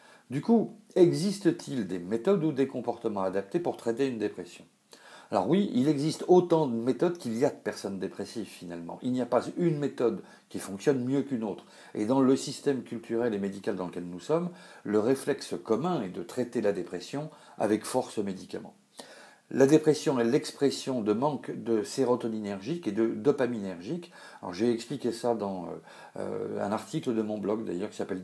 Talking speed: 180 wpm